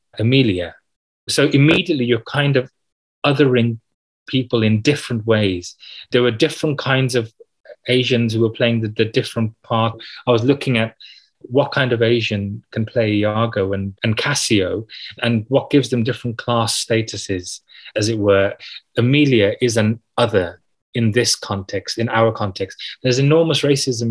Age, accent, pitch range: 30-49, British, 110-130 Hz